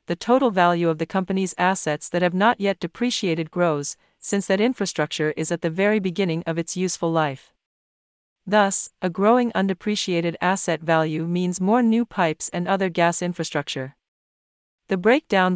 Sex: female